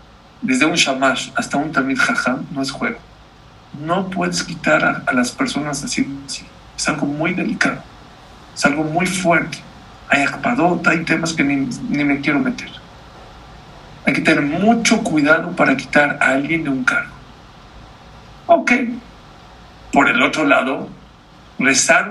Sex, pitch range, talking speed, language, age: male, 175-265 Hz, 150 wpm, English, 50-69